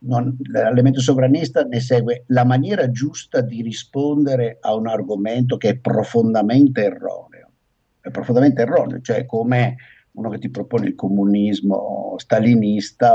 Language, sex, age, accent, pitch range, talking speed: Italian, male, 50-69, native, 105-155 Hz, 130 wpm